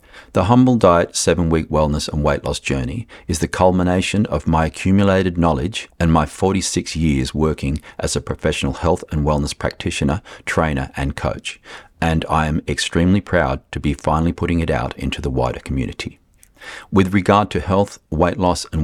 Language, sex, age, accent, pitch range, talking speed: English, male, 40-59, Australian, 75-90 Hz, 170 wpm